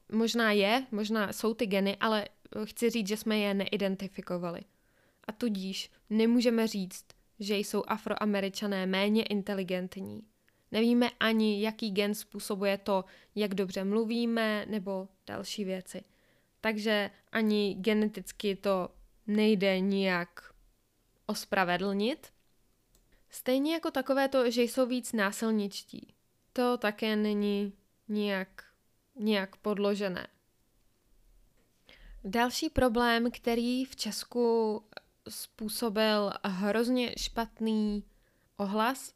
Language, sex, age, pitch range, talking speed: Czech, female, 20-39, 195-230 Hz, 100 wpm